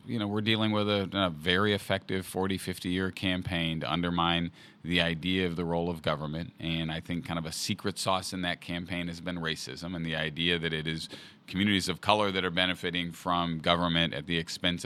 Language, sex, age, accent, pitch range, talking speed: English, male, 40-59, American, 85-95 Hz, 215 wpm